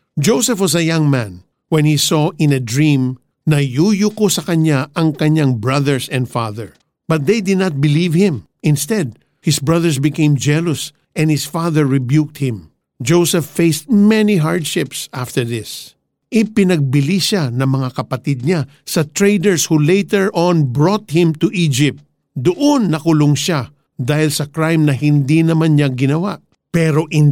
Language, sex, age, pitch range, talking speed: Filipino, male, 50-69, 140-180 Hz, 155 wpm